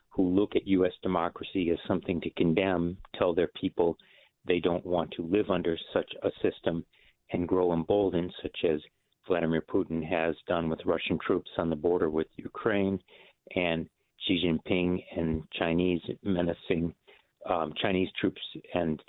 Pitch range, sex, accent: 80-95 Hz, male, American